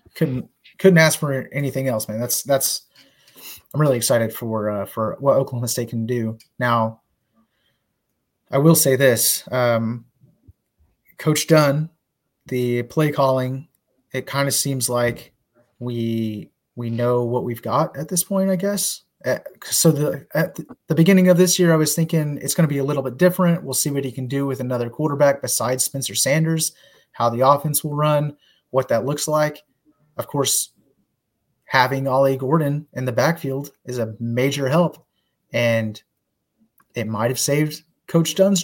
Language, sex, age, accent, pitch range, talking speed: English, male, 30-49, American, 120-150 Hz, 165 wpm